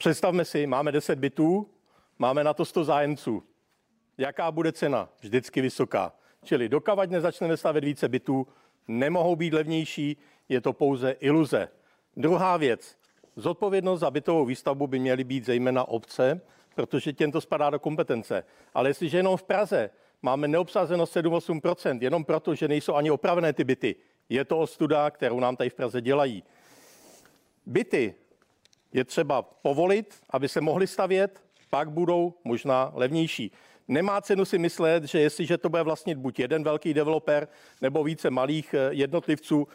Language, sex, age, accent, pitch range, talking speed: Czech, male, 50-69, native, 130-170 Hz, 150 wpm